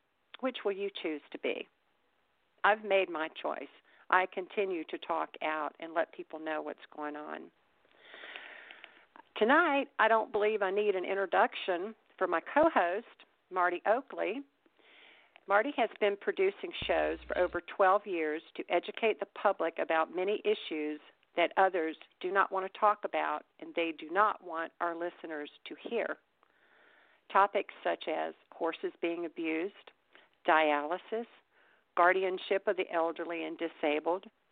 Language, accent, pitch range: English, American, 165-210 Hz